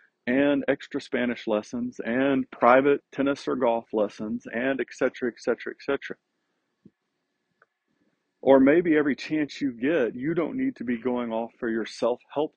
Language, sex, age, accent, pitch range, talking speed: English, male, 50-69, American, 105-140 Hz, 160 wpm